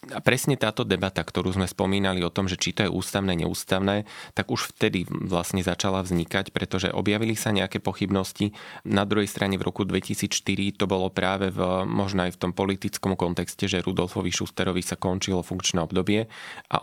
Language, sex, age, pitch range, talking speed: Slovak, male, 20-39, 90-100 Hz, 180 wpm